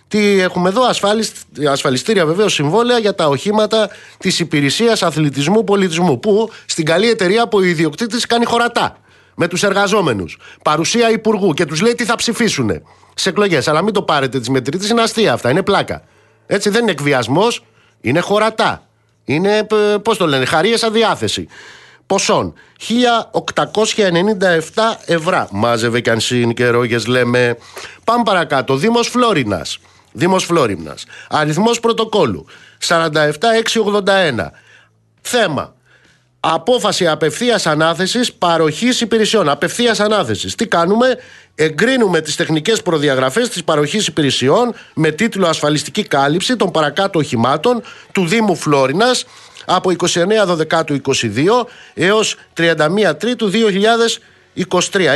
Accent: native